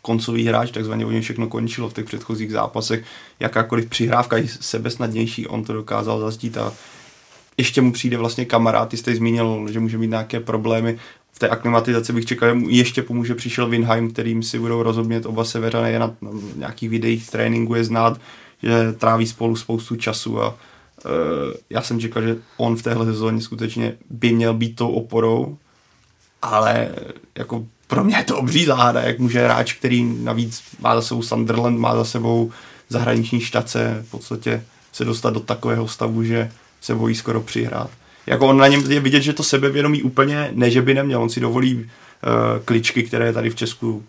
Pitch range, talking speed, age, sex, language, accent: 115-120 Hz, 180 wpm, 20-39, male, Czech, native